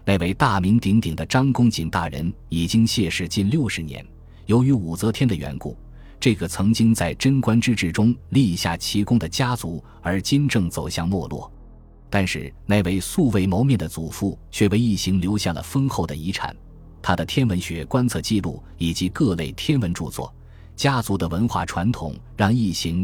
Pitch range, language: 85-115 Hz, Chinese